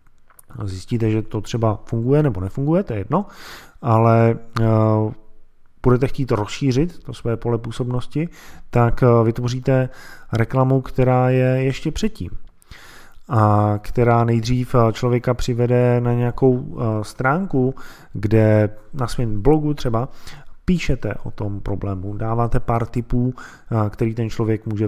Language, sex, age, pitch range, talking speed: Czech, male, 20-39, 105-135 Hz, 120 wpm